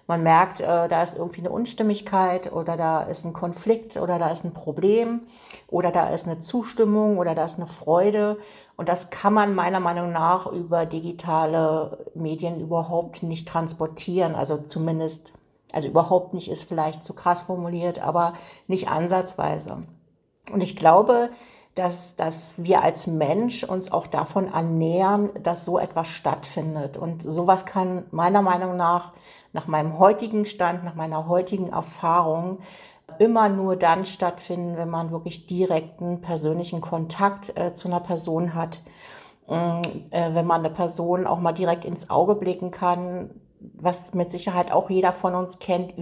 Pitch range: 165-190 Hz